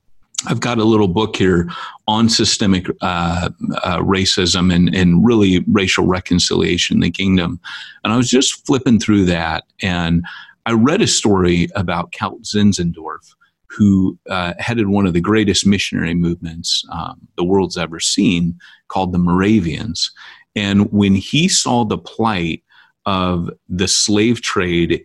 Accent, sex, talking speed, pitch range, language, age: American, male, 145 wpm, 90-110 Hz, English, 40-59